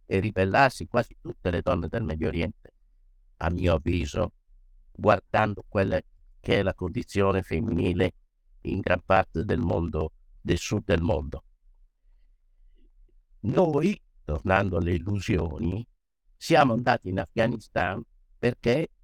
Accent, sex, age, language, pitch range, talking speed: native, male, 60-79, Italian, 85-105 Hz, 115 wpm